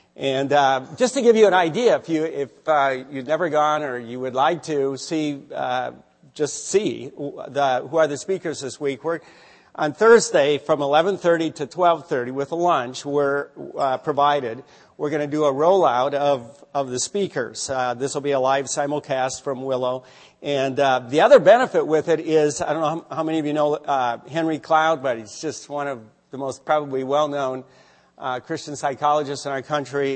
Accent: American